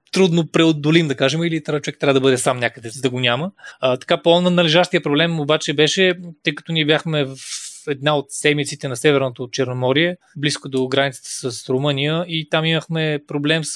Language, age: Bulgarian, 20-39